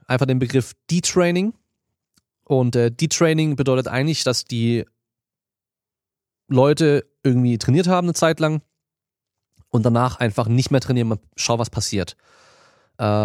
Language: German